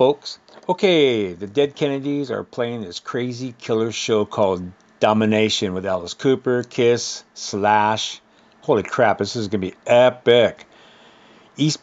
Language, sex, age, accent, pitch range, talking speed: English, male, 50-69, American, 105-150 Hz, 135 wpm